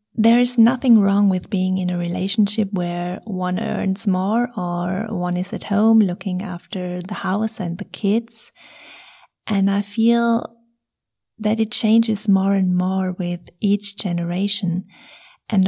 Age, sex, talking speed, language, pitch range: 30-49, female, 145 wpm, English, 185-220 Hz